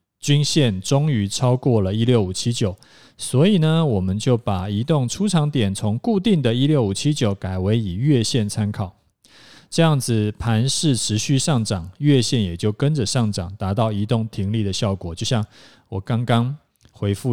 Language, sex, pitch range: Chinese, male, 100-130 Hz